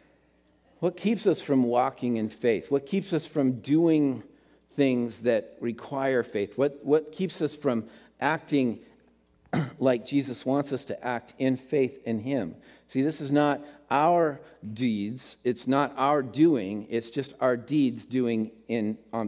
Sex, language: male, English